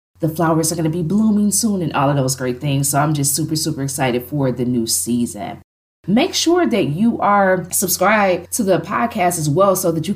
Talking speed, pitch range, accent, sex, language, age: 225 wpm, 145-195 Hz, American, female, English, 20-39